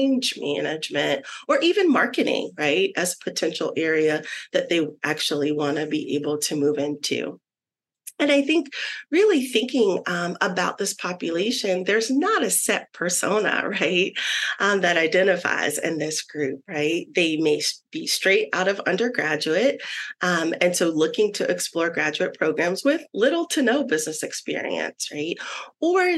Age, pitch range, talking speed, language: 30-49, 175-275 Hz, 150 wpm, English